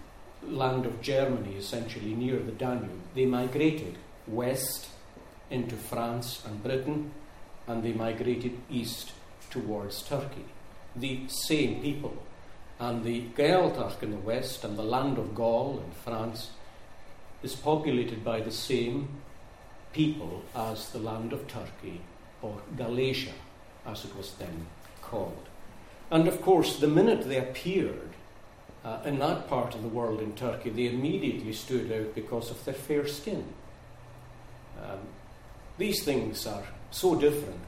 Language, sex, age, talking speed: English, male, 50-69, 135 wpm